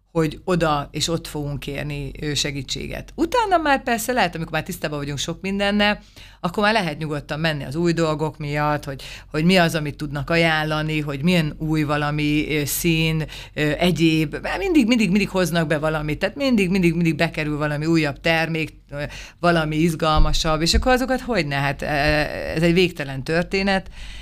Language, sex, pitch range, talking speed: Hungarian, female, 150-180 Hz, 150 wpm